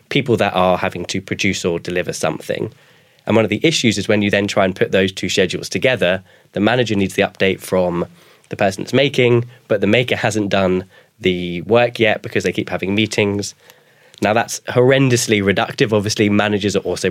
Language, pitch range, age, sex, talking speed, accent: English, 95-110 Hz, 10-29, male, 195 wpm, British